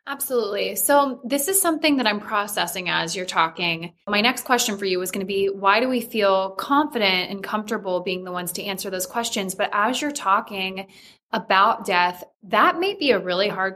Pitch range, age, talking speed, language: 195-245 Hz, 20-39, 200 wpm, English